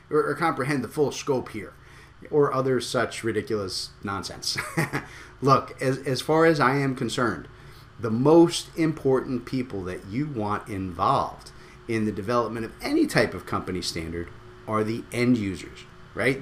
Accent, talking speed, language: American, 150 wpm, English